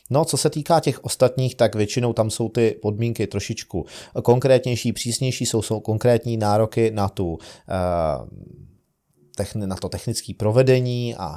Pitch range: 100-115 Hz